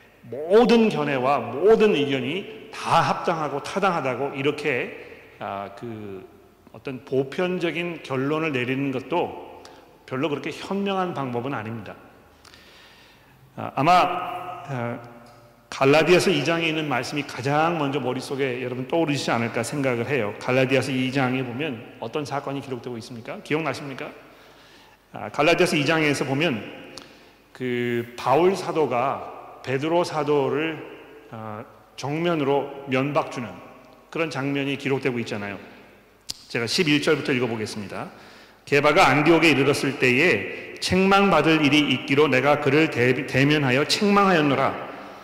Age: 40-59